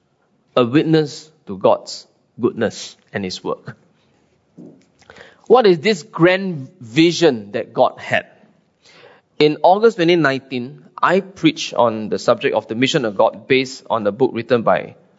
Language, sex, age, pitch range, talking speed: English, male, 20-39, 130-165 Hz, 140 wpm